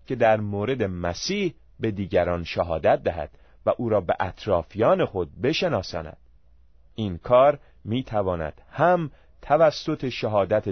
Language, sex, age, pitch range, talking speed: Persian, male, 30-49, 85-125 Hz, 125 wpm